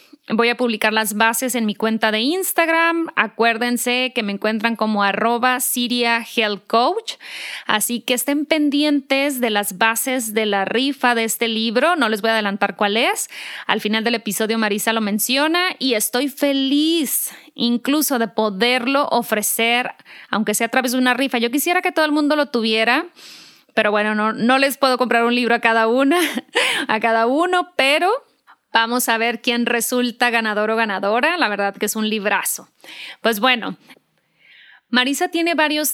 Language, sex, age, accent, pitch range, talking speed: Spanish, female, 20-39, Mexican, 225-265 Hz, 170 wpm